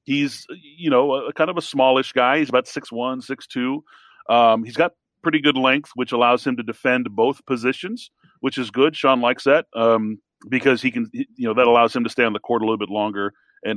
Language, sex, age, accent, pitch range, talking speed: English, male, 40-59, American, 115-135 Hz, 225 wpm